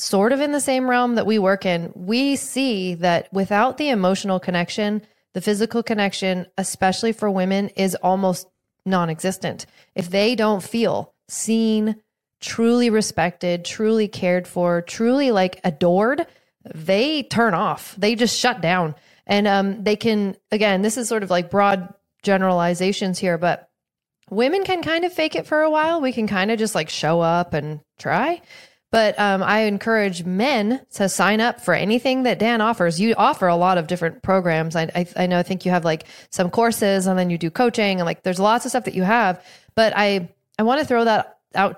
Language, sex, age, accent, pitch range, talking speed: English, female, 30-49, American, 180-225 Hz, 190 wpm